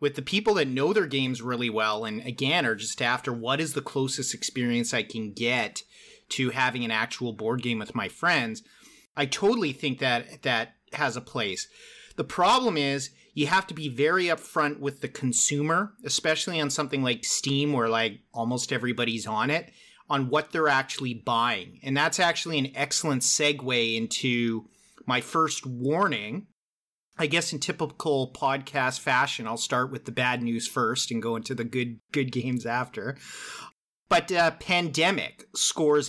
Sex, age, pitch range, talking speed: male, 30-49, 125-155 Hz, 170 wpm